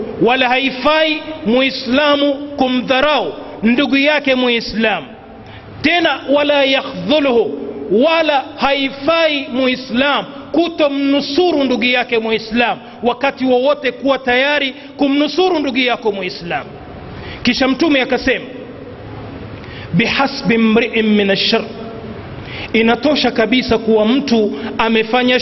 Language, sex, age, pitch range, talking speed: Swahili, male, 40-59, 240-280 Hz, 85 wpm